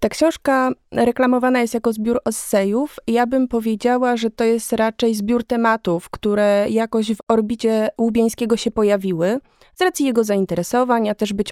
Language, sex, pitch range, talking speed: Polish, female, 210-245 Hz, 155 wpm